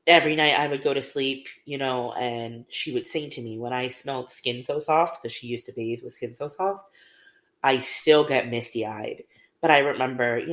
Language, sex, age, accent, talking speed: English, female, 30-49, American, 220 wpm